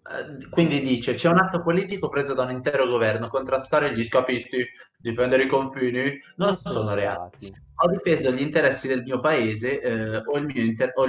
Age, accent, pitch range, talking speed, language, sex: 20-39, native, 120-155 Hz, 170 wpm, Italian, male